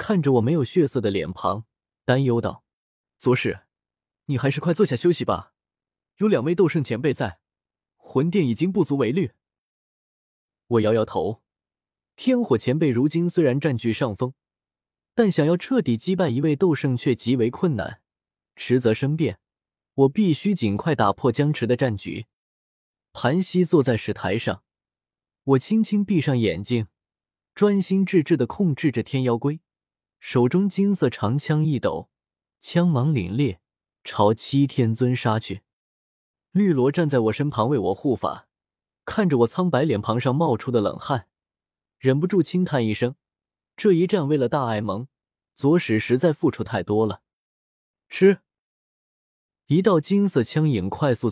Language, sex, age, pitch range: Chinese, male, 20-39, 110-170 Hz